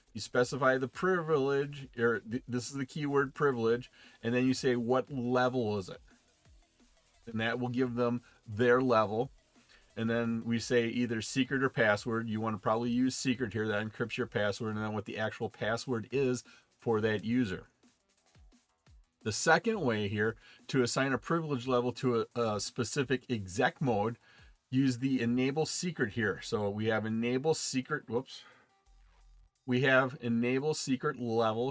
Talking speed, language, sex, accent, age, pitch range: 160 wpm, English, male, American, 40-59, 110-135 Hz